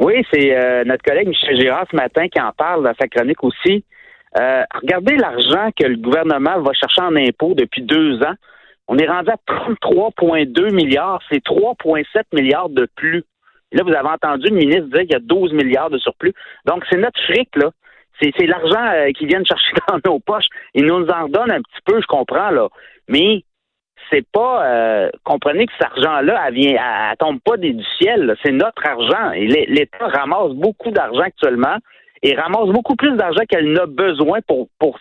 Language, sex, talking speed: French, male, 195 wpm